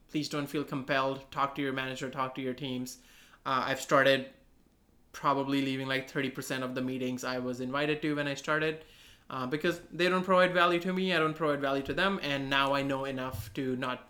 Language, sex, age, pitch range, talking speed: English, male, 20-39, 135-170 Hz, 215 wpm